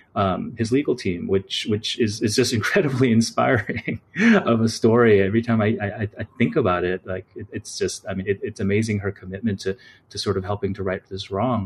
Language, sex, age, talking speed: English, male, 30-49, 215 wpm